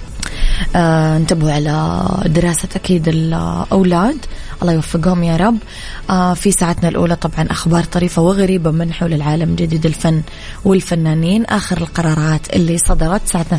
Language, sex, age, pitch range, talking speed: English, female, 20-39, 165-185 Hz, 130 wpm